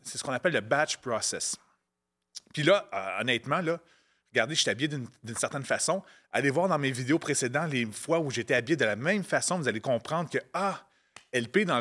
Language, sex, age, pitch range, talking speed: French, male, 30-49, 120-170 Hz, 215 wpm